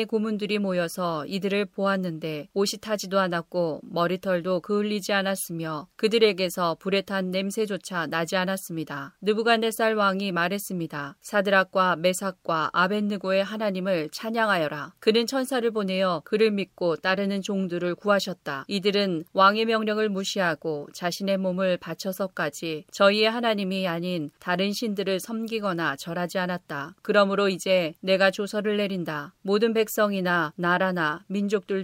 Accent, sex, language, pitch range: native, female, Korean, 175-205 Hz